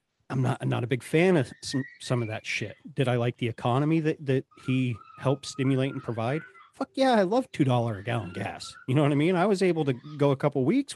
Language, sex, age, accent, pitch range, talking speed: English, male, 30-49, American, 120-150 Hz, 245 wpm